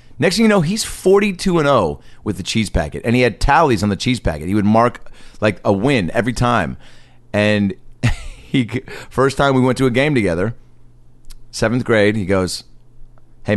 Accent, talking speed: American, 185 wpm